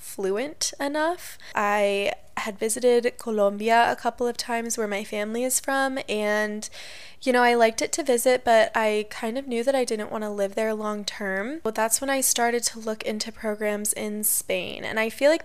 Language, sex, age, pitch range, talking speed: English, female, 20-39, 210-250 Hz, 200 wpm